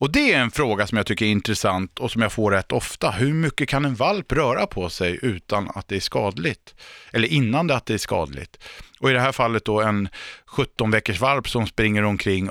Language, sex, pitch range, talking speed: Swedish, male, 100-130 Hz, 235 wpm